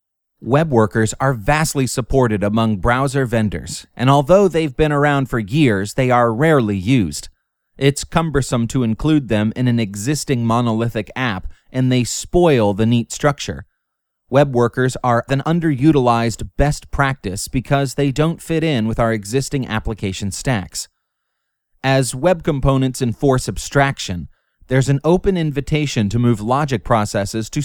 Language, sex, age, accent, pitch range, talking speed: English, male, 30-49, American, 110-145 Hz, 145 wpm